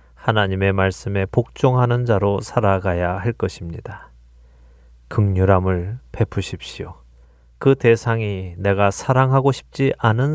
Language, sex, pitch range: Korean, male, 80-115 Hz